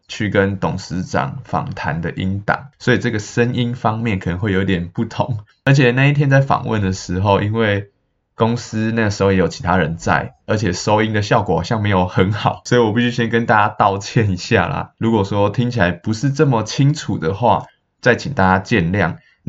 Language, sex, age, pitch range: Chinese, male, 20-39, 95-120 Hz